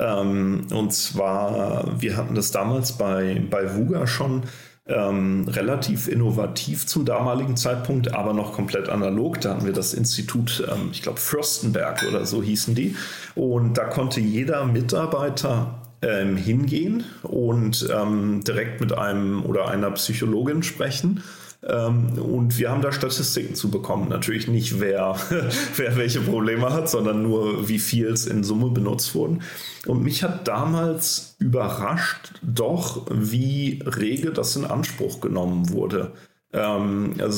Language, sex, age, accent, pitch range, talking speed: German, male, 40-59, German, 100-125 Hz, 140 wpm